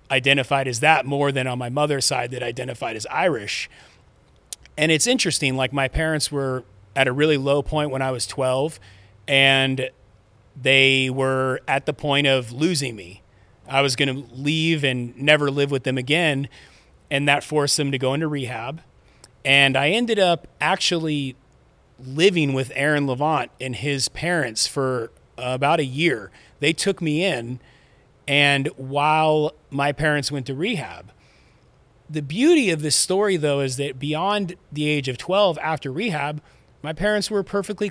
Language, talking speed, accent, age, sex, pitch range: English, 160 wpm, American, 30-49, male, 135-155 Hz